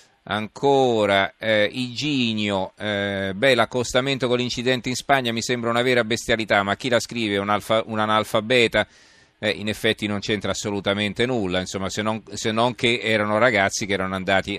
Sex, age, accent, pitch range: male, 30-49, native, 95-115 Hz